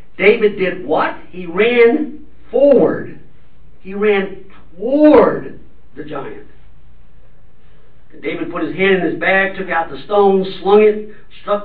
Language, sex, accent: English, male, American